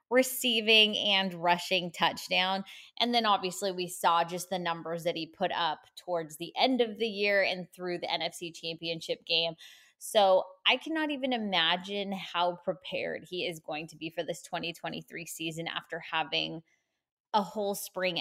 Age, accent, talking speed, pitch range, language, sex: 20-39, American, 160 wpm, 165-210 Hz, English, female